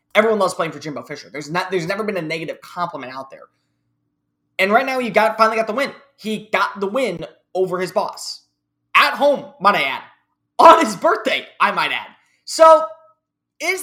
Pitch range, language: 150-220 Hz, English